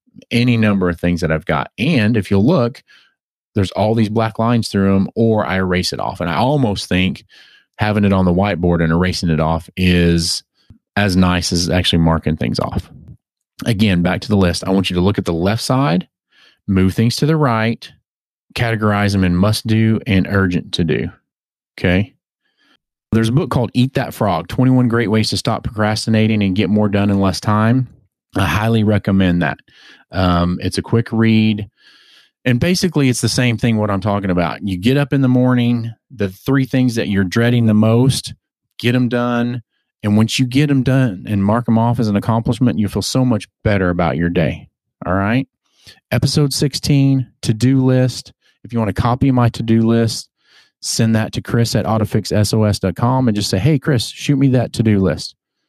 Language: English